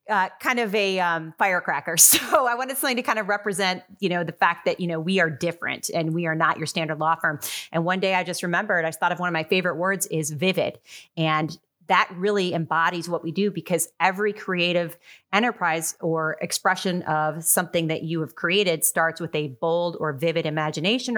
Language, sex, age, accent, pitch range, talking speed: English, female, 30-49, American, 160-195 Hz, 210 wpm